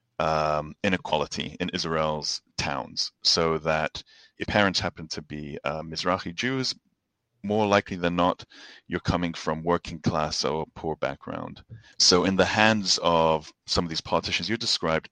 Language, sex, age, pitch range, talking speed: English, male, 30-49, 80-95 Hz, 150 wpm